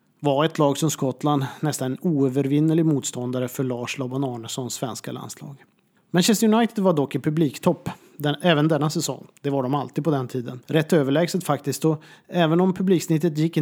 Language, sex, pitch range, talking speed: Swedish, male, 135-175 Hz, 165 wpm